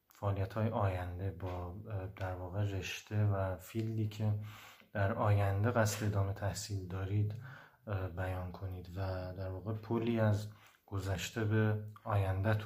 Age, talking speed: 30-49, 120 wpm